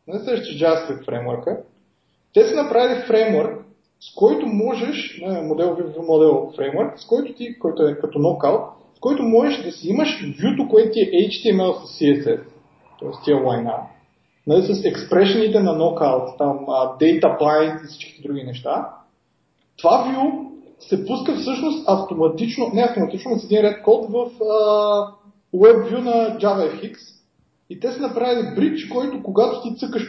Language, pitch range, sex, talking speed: Bulgarian, 185-245 Hz, male, 145 wpm